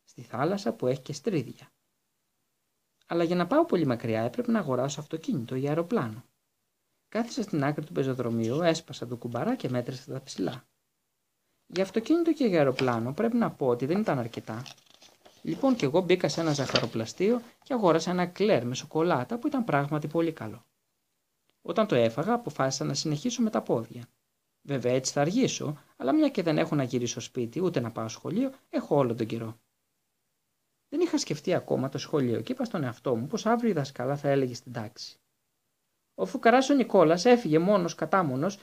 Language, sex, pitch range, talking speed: Greek, male, 125-200 Hz, 180 wpm